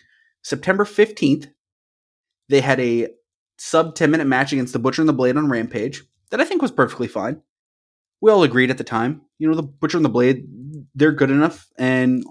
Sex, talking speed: male, 185 wpm